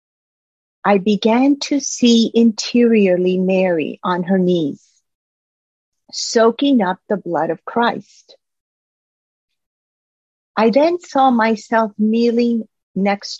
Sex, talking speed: female, 95 wpm